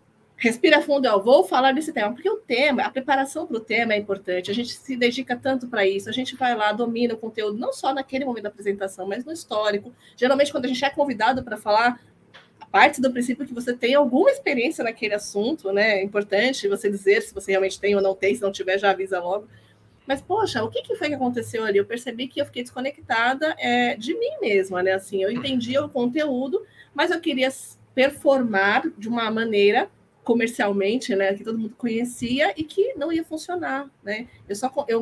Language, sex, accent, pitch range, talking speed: Portuguese, female, Brazilian, 210-270 Hz, 210 wpm